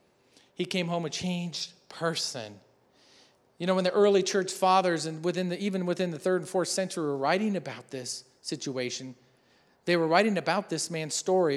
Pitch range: 140-185 Hz